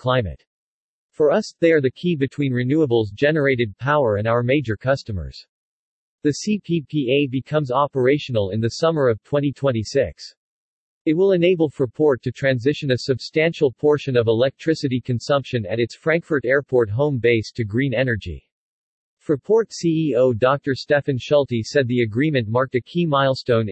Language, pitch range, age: English, 120-150 Hz, 40-59